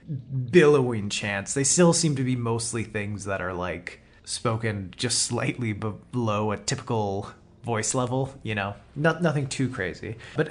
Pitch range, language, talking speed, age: 105-130 Hz, English, 155 wpm, 20-39